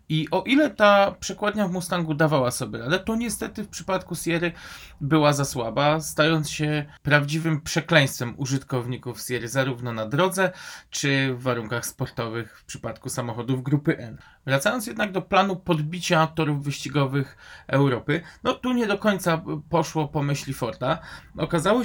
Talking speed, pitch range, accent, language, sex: 150 wpm, 135-160 Hz, native, Polish, male